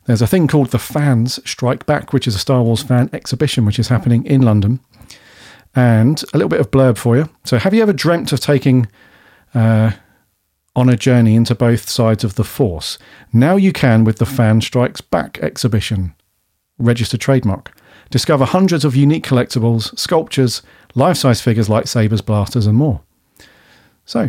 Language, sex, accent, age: English, male, British, 40-59